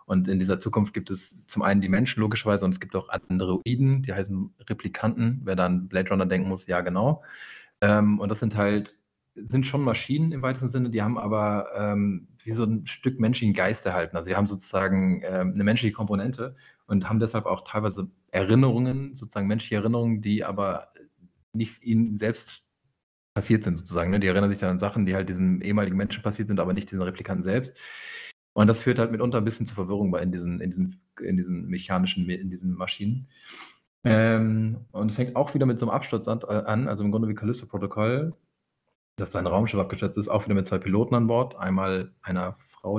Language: German